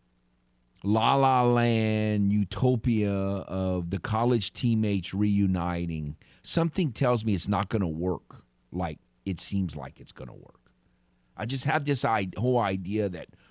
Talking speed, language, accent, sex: 140 wpm, English, American, male